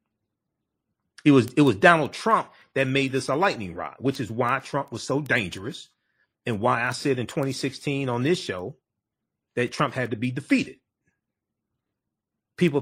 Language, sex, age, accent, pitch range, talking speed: English, male, 40-59, American, 115-150 Hz, 165 wpm